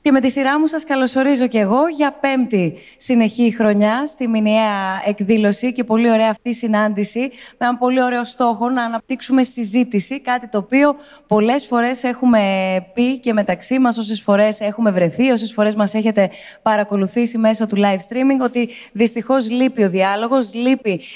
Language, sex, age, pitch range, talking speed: Greek, female, 20-39, 205-245 Hz, 165 wpm